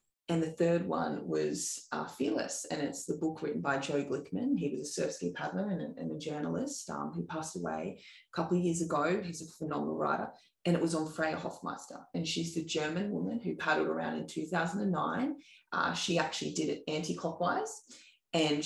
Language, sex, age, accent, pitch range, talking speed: English, female, 20-39, Australian, 155-180 Hz, 195 wpm